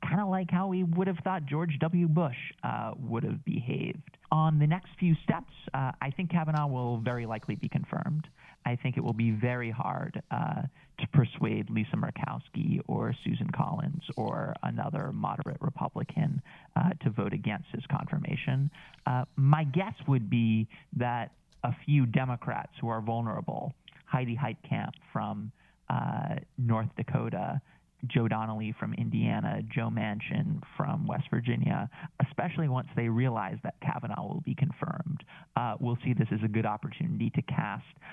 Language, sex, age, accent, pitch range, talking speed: English, male, 30-49, American, 120-165 Hz, 155 wpm